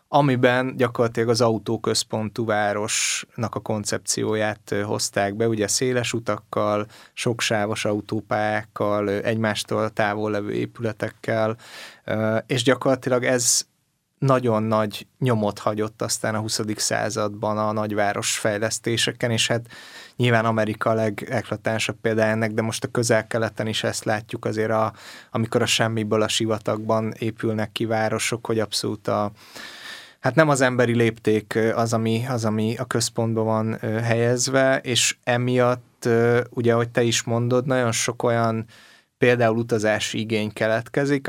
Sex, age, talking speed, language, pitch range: male, 20-39, 125 wpm, Hungarian, 110-120 Hz